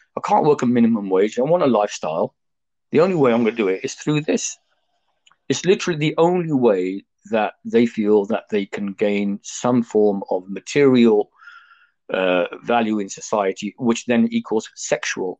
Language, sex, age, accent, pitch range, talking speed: English, male, 50-69, British, 110-135 Hz, 170 wpm